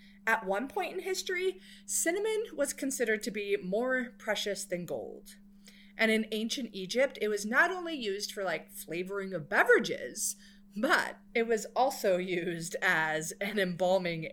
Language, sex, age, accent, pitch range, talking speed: English, female, 30-49, American, 180-225 Hz, 150 wpm